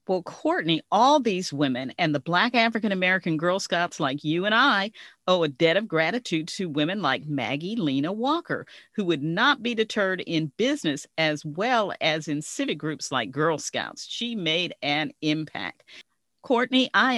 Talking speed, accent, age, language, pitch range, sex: 170 wpm, American, 40-59, English, 165-240 Hz, female